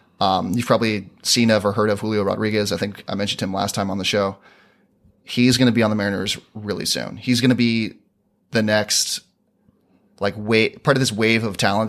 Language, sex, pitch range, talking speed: English, male, 100-120 Hz, 215 wpm